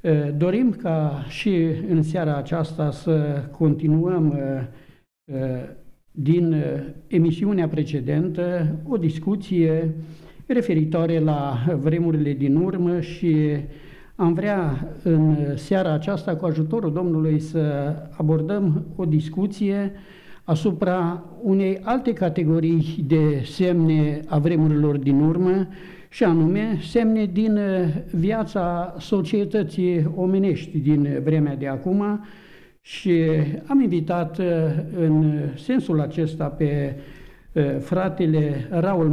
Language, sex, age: Romanian, male, 60-79